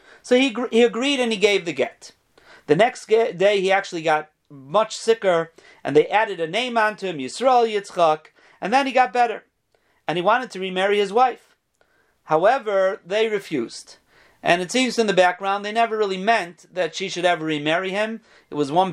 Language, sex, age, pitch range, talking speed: English, male, 40-59, 170-230 Hz, 190 wpm